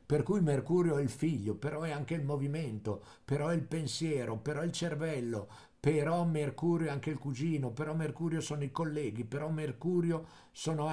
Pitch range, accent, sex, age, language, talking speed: 125-175 Hz, native, male, 50-69, Italian, 180 wpm